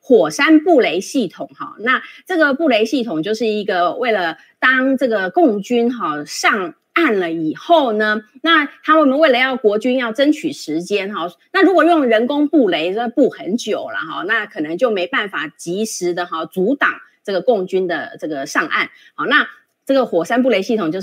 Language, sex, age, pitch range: Chinese, female, 30-49, 200-310 Hz